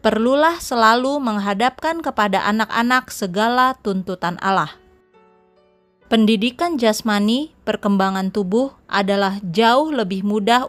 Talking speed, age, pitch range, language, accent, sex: 90 wpm, 30-49, 195-240 Hz, Indonesian, native, female